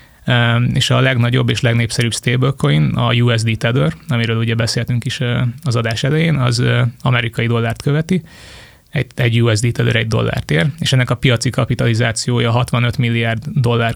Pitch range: 115-130 Hz